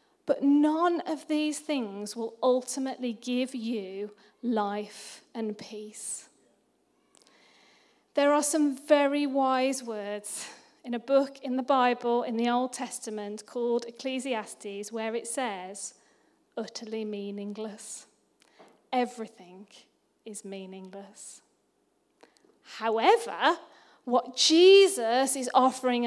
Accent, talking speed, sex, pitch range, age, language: British, 100 wpm, female, 230-290 Hz, 40-59, English